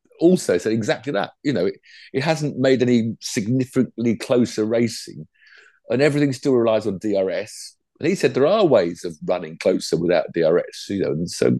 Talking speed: 180 wpm